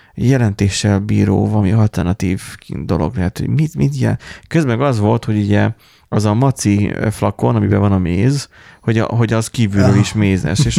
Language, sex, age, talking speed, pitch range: Hungarian, male, 30-49, 180 wpm, 100-120 Hz